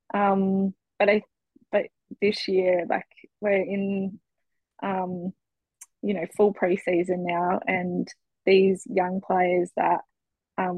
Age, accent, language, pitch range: 20-39, Australian, English, 180-195 Hz